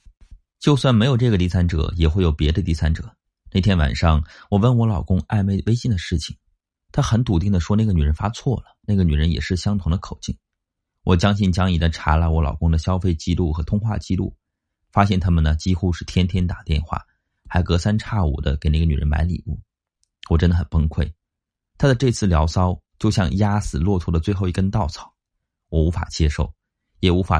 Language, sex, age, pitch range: Chinese, male, 30-49, 80-100 Hz